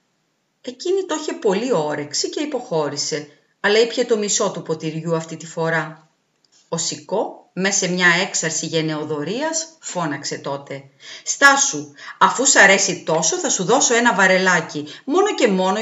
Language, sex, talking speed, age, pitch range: Greek, female, 145 wpm, 40-59, 160-240 Hz